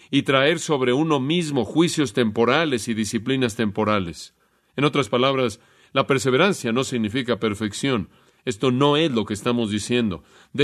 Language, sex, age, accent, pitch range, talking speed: Spanish, male, 40-59, Mexican, 115-160 Hz, 145 wpm